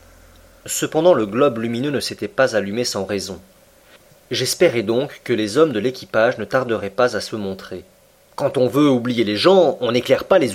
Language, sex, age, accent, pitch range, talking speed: French, male, 40-59, French, 115-165 Hz, 190 wpm